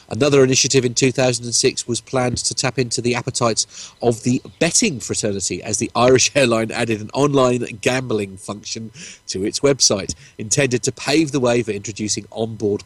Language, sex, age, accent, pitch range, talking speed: English, male, 40-59, British, 100-125 Hz, 165 wpm